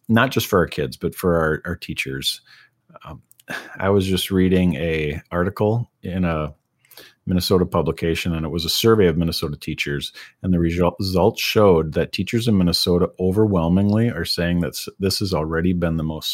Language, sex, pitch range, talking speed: English, male, 80-105 Hz, 175 wpm